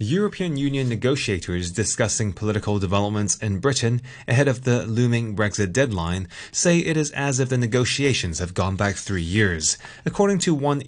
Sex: male